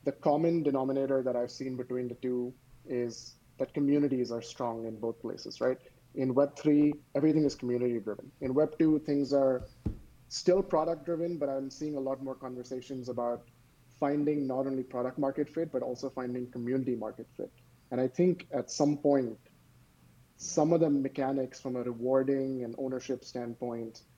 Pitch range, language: 120-135 Hz, English